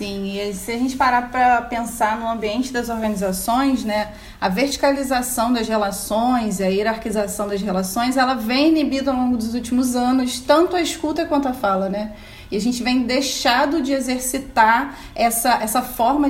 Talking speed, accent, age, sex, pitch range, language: 170 wpm, Brazilian, 30-49, female, 215-260 Hz, Portuguese